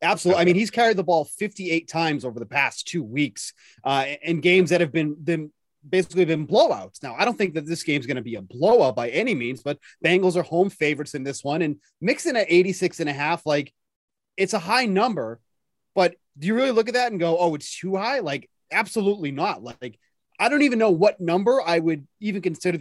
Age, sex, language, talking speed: 30-49, male, English, 230 wpm